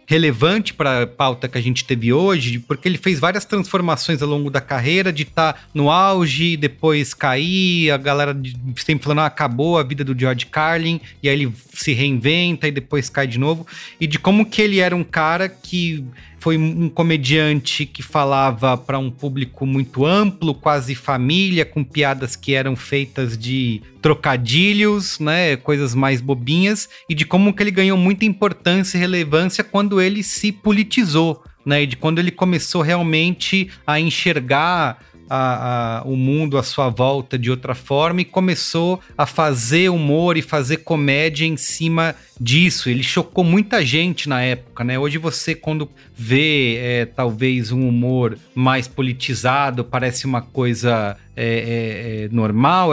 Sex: male